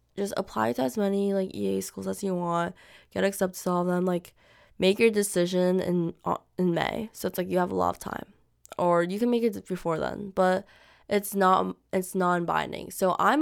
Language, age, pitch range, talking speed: English, 20-39, 175-210 Hz, 210 wpm